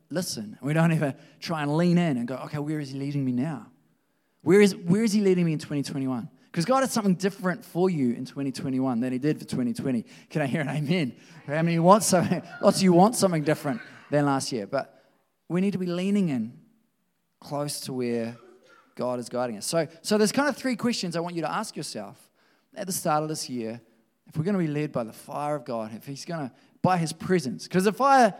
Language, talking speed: English, 240 wpm